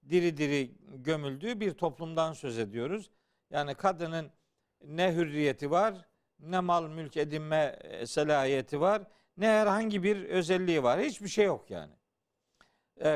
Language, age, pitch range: Turkish, 50-69, 150-205 Hz